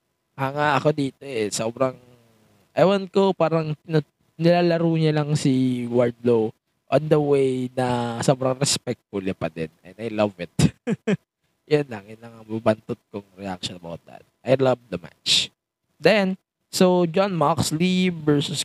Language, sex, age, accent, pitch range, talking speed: English, male, 20-39, Filipino, 100-145 Hz, 145 wpm